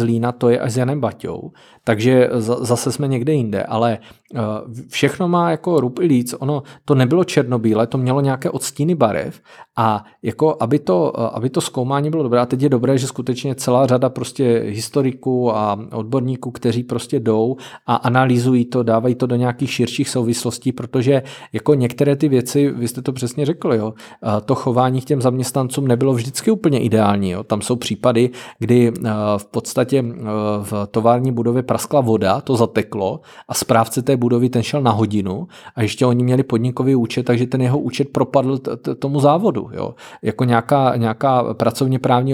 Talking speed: 175 wpm